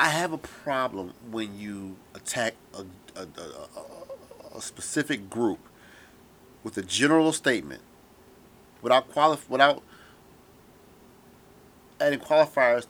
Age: 40-59